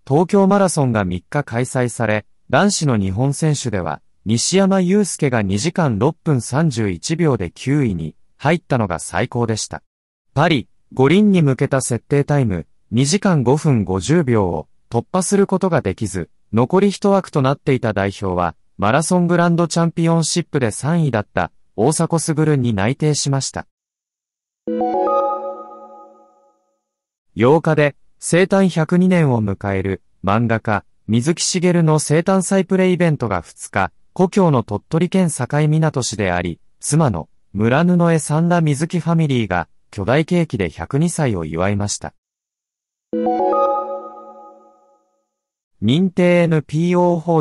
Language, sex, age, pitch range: Japanese, male, 30-49, 105-170 Hz